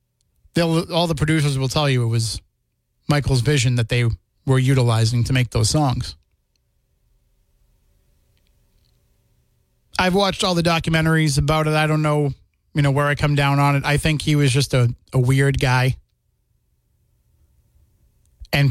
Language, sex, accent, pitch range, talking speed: English, male, American, 115-150 Hz, 150 wpm